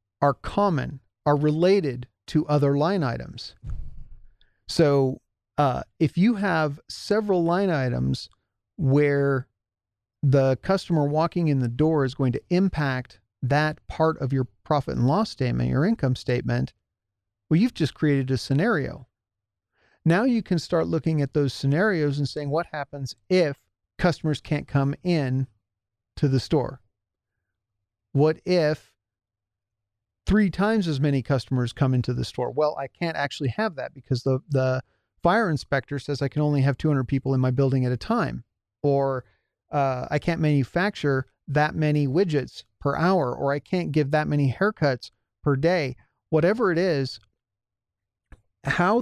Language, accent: English, American